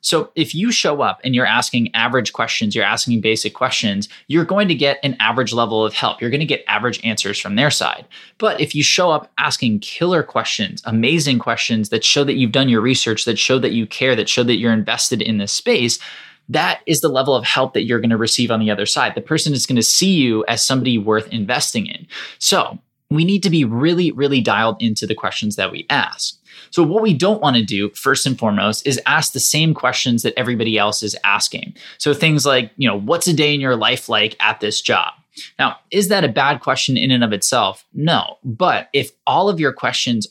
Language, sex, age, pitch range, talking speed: English, male, 20-39, 110-145 Hz, 230 wpm